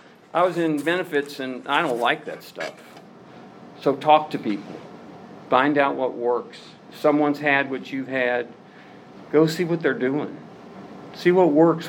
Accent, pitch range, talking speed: American, 130-170 Hz, 155 wpm